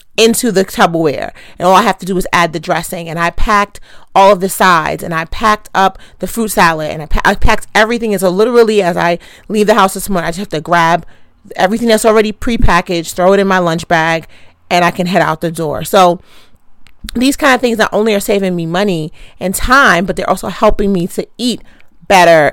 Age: 30-49